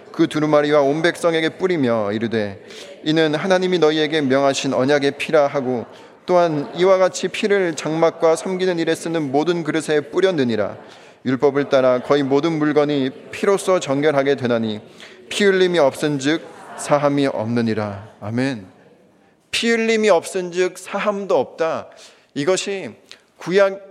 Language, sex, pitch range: Korean, male, 140-195 Hz